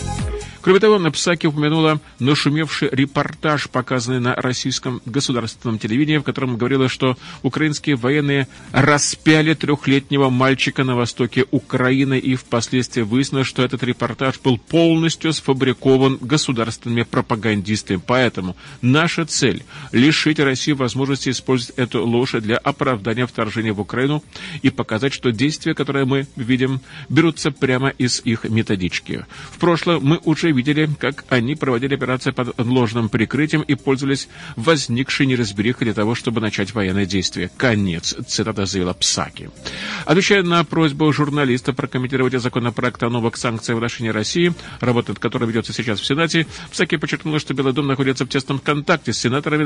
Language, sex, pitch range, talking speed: Russian, male, 120-150 Hz, 140 wpm